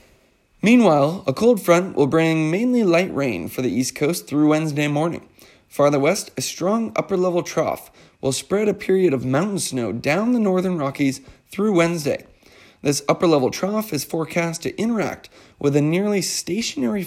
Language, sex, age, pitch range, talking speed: English, male, 20-39, 140-195 Hz, 160 wpm